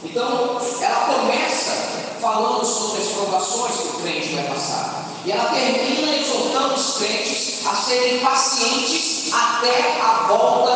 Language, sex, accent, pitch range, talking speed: Portuguese, male, Brazilian, 225-285 Hz, 135 wpm